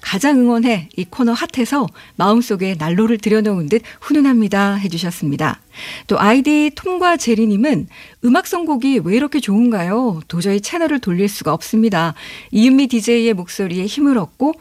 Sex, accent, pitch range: female, native, 200-265 Hz